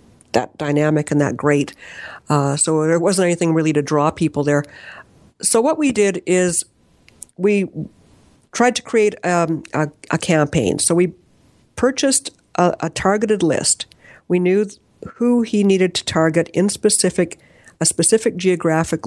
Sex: female